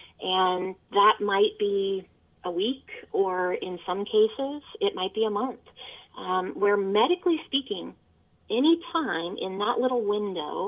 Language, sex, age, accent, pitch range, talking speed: English, female, 30-49, American, 195-255 Hz, 140 wpm